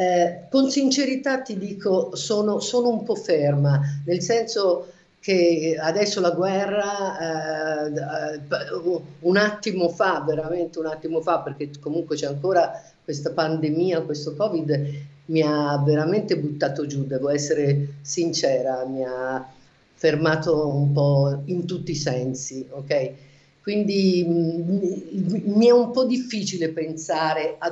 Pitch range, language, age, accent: 145-185 Hz, Italian, 50-69, native